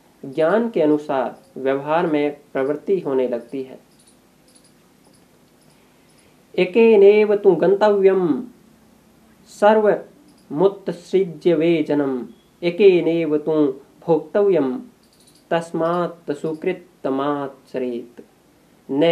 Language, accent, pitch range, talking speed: Hindi, native, 140-175 Hz, 50 wpm